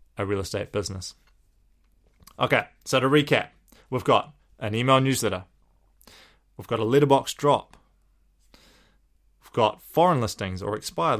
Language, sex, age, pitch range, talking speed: English, male, 20-39, 100-125 Hz, 130 wpm